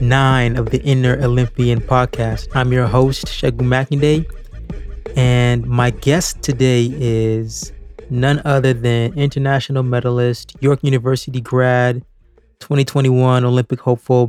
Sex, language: male, English